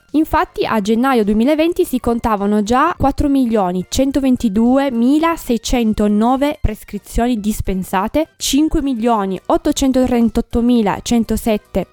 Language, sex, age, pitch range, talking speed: Italian, female, 20-39, 205-270 Hz, 55 wpm